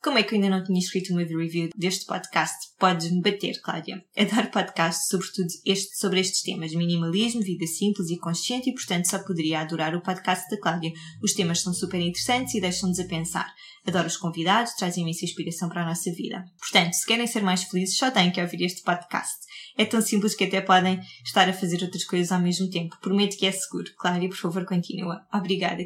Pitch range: 175-200 Hz